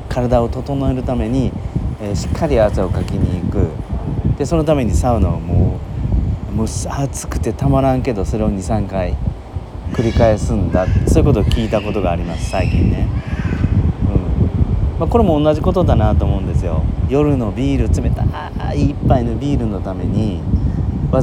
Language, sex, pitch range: Japanese, male, 90-115 Hz